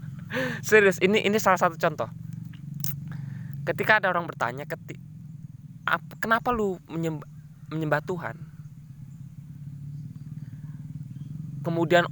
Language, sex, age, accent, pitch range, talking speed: Indonesian, male, 20-39, native, 145-160 Hz, 80 wpm